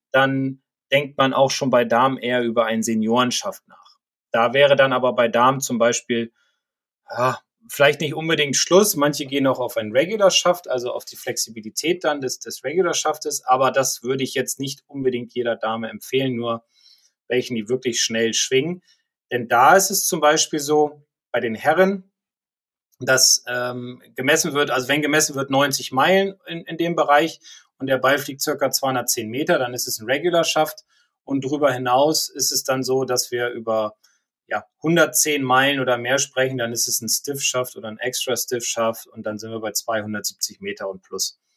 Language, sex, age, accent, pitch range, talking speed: German, male, 30-49, German, 125-155 Hz, 180 wpm